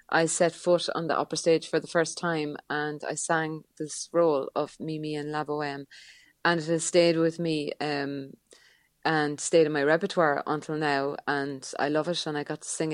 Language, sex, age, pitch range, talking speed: English, female, 30-49, 150-165 Hz, 205 wpm